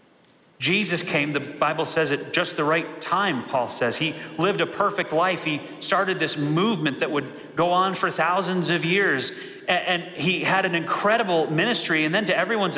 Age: 30-49